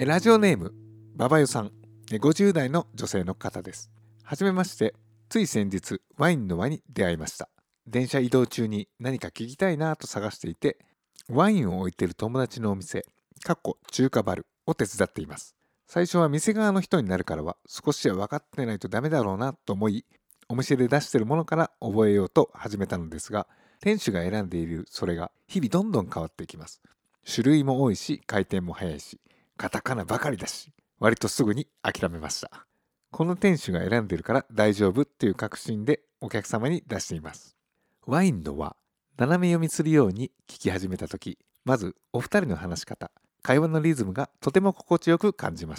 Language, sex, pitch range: Japanese, male, 100-150 Hz